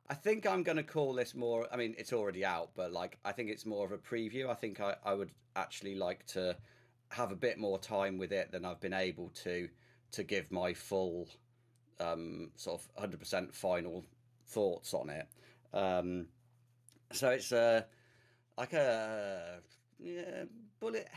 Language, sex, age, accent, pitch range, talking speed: English, male, 40-59, British, 95-125 Hz, 175 wpm